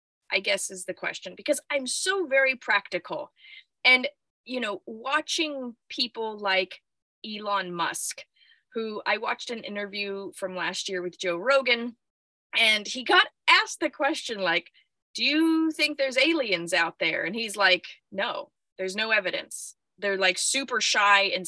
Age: 20-39